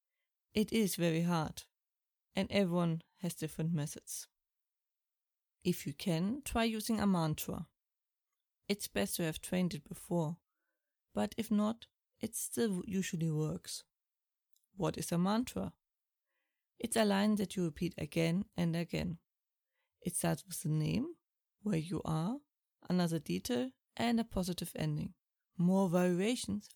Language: English